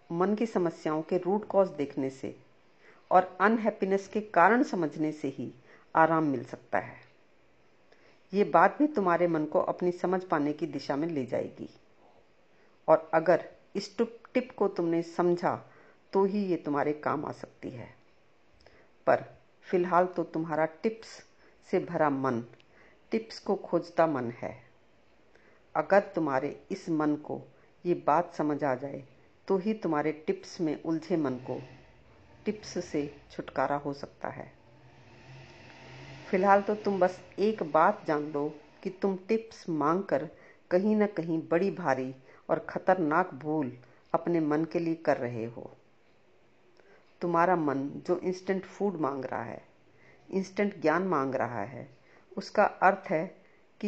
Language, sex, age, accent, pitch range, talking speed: Hindi, female, 50-69, native, 150-195 Hz, 145 wpm